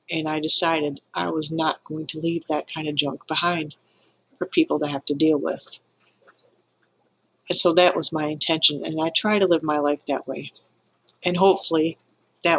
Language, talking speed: English, 185 wpm